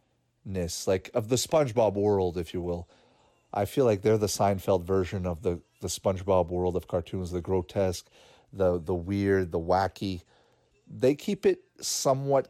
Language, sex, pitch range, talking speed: English, male, 95-125 Hz, 165 wpm